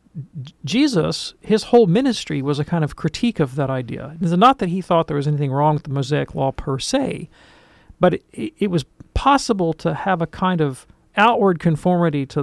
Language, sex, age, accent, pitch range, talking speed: English, male, 40-59, American, 140-170 Hz, 190 wpm